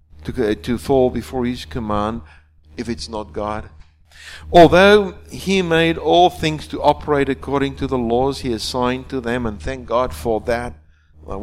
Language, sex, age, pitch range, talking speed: English, male, 50-69, 100-135 Hz, 165 wpm